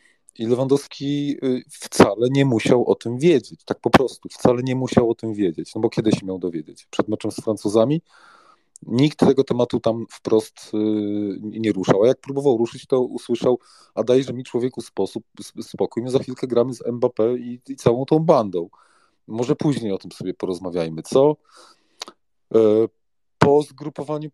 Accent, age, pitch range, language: native, 30-49, 105-140 Hz, Polish